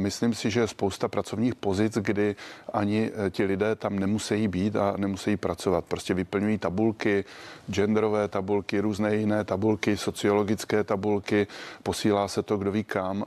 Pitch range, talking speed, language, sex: 100-110 Hz, 150 wpm, Czech, male